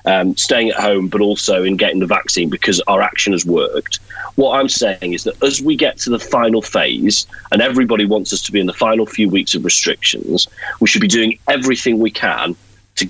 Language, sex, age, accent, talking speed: English, male, 30-49, British, 220 wpm